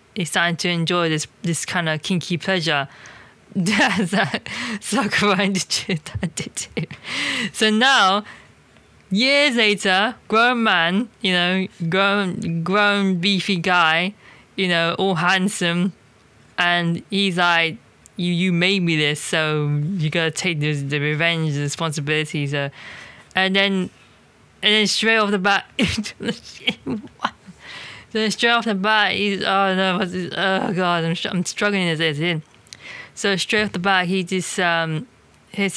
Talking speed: 125 wpm